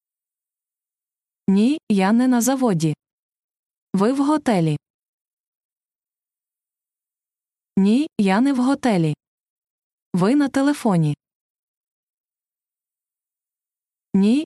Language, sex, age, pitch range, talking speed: Ukrainian, female, 20-39, 180-260 Hz, 70 wpm